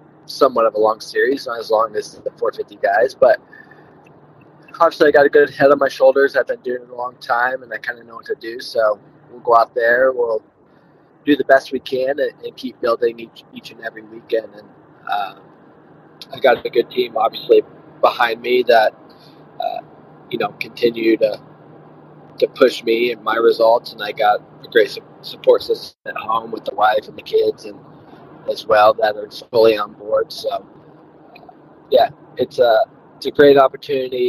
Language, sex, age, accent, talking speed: English, male, 20-39, American, 195 wpm